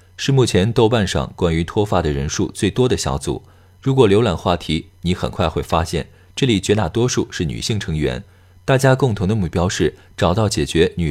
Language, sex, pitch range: Chinese, male, 85-110 Hz